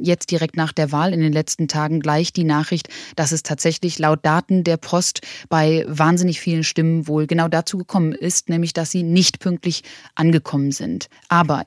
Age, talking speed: 20-39, 185 wpm